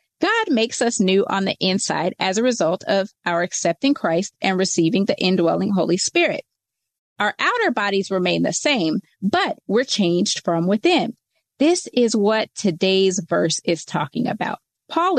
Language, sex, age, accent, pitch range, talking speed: English, female, 30-49, American, 185-255 Hz, 160 wpm